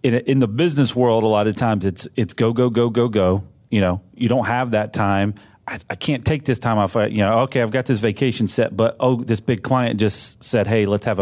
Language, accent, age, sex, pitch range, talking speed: English, American, 40-59, male, 110-135 Hz, 250 wpm